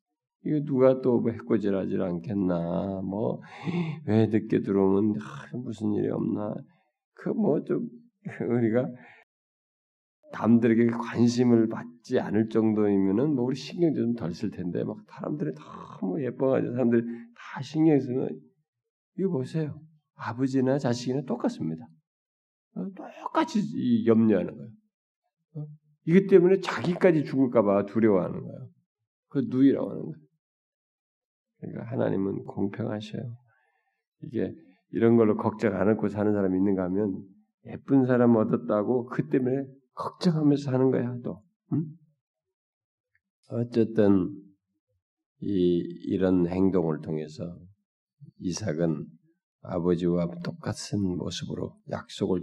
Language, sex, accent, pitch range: Korean, male, native, 100-150 Hz